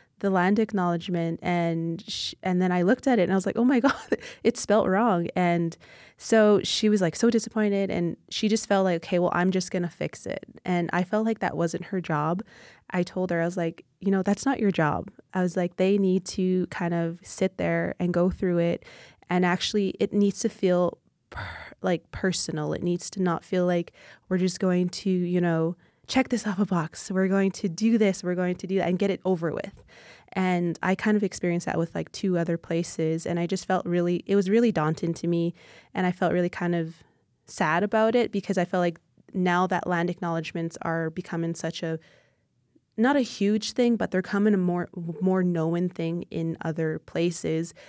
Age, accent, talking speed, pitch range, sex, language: 20-39, American, 215 wpm, 170-195 Hz, female, English